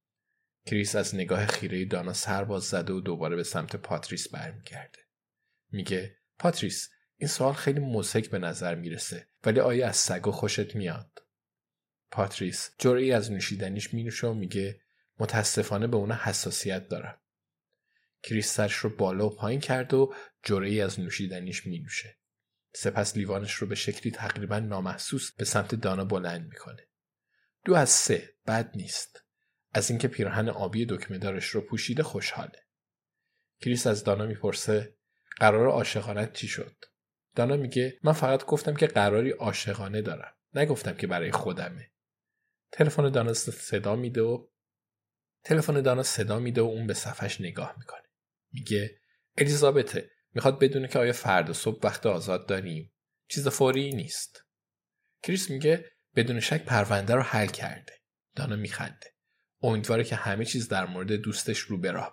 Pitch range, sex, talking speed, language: 100-125 Hz, male, 145 wpm, Persian